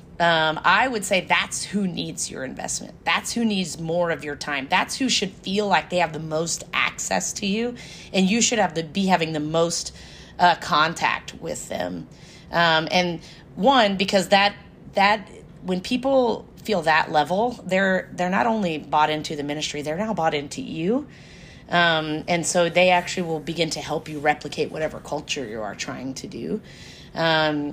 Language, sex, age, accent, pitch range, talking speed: English, female, 30-49, American, 160-200 Hz, 195 wpm